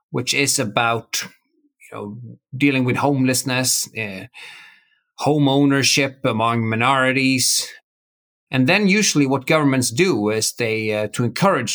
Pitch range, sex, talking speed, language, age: 125-155 Hz, male, 125 wpm, English, 30-49